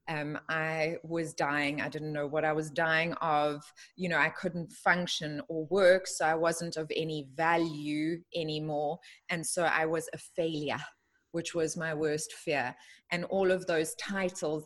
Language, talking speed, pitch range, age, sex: English, 170 wpm, 160-190 Hz, 20-39, female